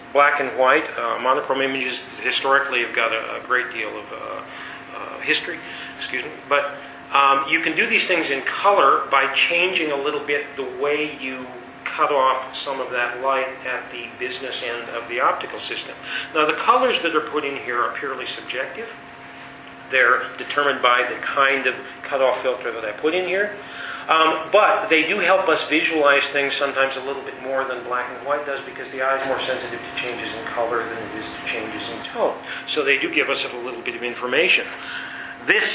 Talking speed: 200 wpm